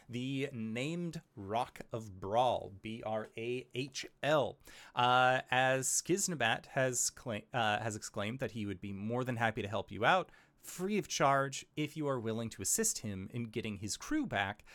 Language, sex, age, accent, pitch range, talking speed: English, male, 30-49, American, 115-185 Hz, 155 wpm